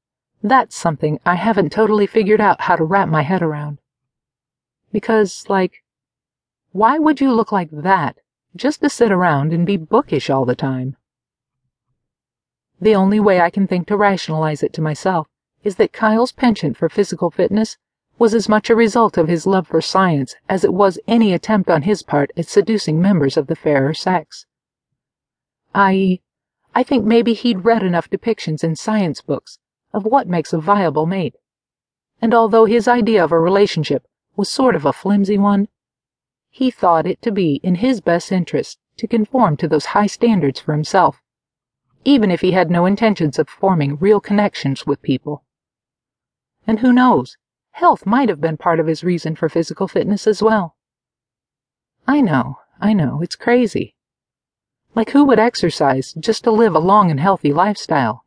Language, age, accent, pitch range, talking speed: English, 50-69, American, 150-215 Hz, 170 wpm